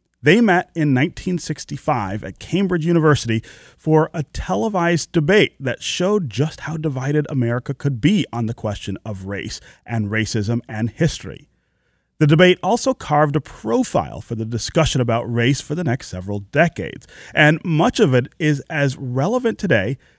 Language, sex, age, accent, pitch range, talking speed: English, male, 30-49, American, 115-155 Hz, 155 wpm